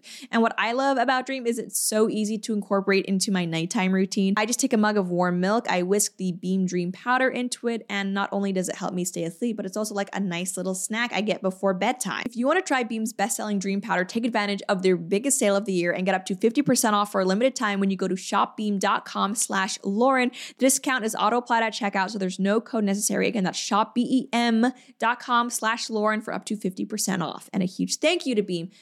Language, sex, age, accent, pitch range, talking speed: English, female, 20-39, American, 195-260 Hz, 235 wpm